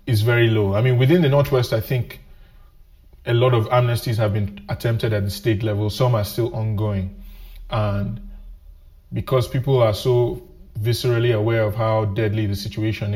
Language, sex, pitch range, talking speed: English, male, 100-115 Hz, 170 wpm